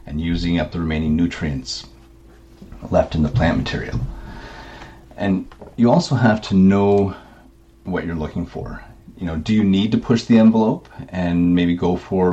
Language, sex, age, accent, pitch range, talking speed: English, male, 40-59, American, 85-95 Hz, 165 wpm